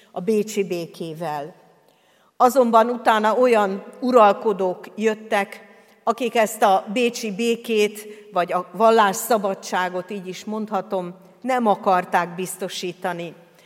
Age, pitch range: 50-69, 185-225 Hz